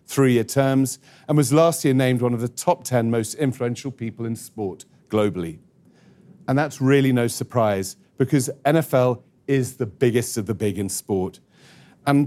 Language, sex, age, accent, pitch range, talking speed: English, male, 40-59, British, 120-150 Hz, 165 wpm